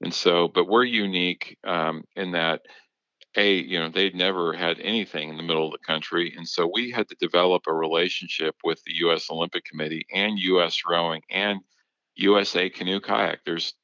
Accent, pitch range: American, 85-100 Hz